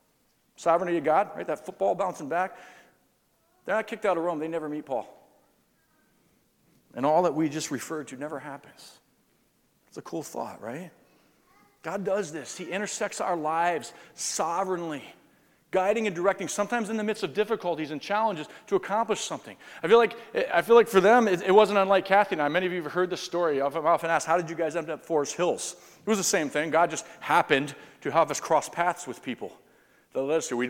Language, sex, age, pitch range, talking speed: English, male, 40-59, 150-195 Hz, 200 wpm